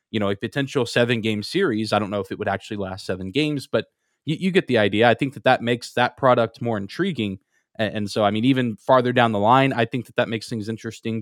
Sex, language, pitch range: male, English, 110-130 Hz